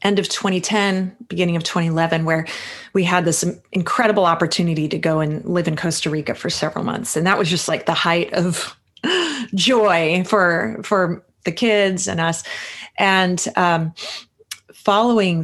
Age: 30-49